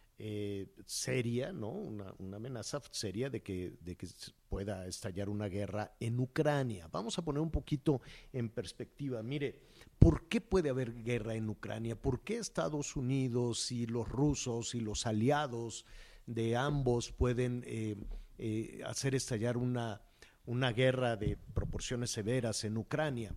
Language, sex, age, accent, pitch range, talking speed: Spanish, male, 50-69, Mexican, 110-135 Hz, 145 wpm